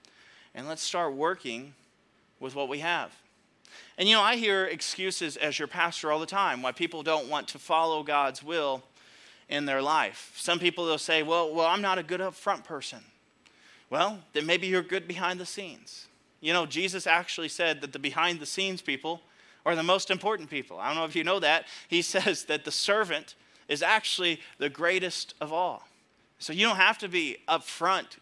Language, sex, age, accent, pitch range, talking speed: English, male, 30-49, American, 155-190 Hz, 200 wpm